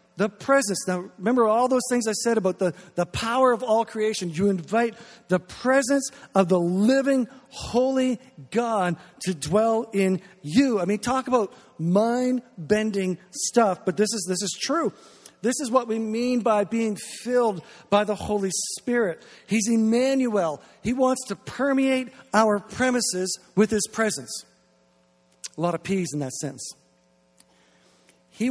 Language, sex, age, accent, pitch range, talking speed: English, male, 50-69, American, 180-240 Hz, 150 wpm